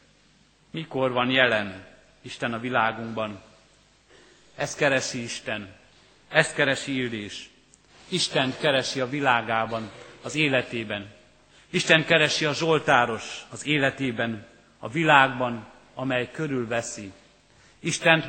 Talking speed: 95 wpm